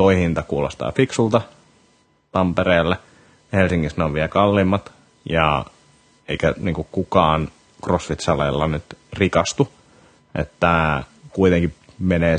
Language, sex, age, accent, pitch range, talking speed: Finnish, male, 30-49, native, 80-95 Hz, 90 wpm